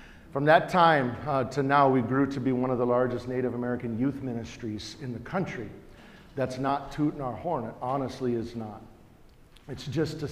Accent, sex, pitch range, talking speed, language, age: American, male, 110-130 Hz, 190 wpm, English, 50-69